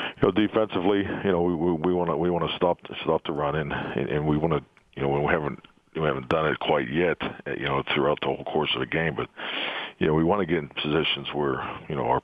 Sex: male